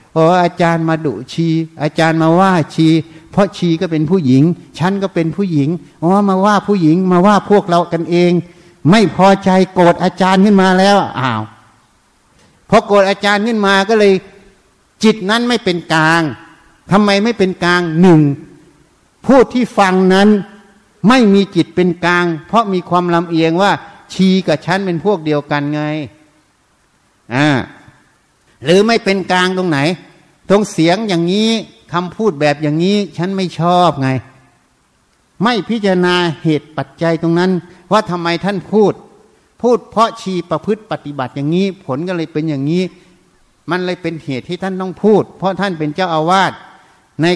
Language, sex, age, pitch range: Thai, male, 60-79, 155-195 Hz